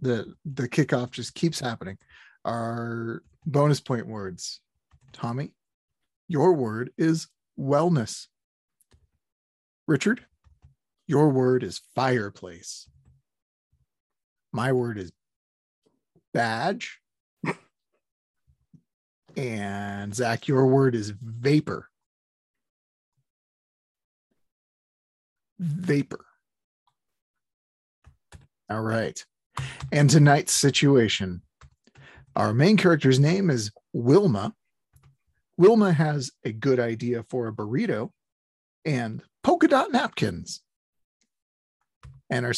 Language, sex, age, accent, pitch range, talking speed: English, male, 40-59, American, 100-155 Hz, 80 wpm